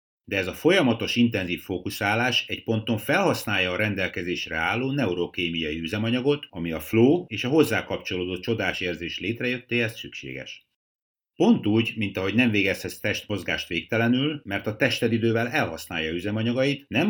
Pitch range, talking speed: 90-120 Hz, 135 wpm